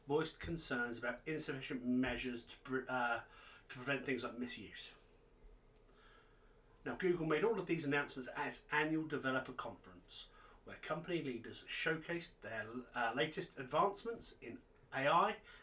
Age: 30-49